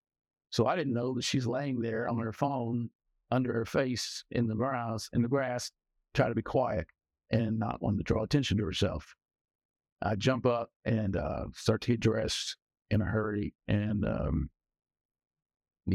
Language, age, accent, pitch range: English, 60-79, American, 110-125 Hz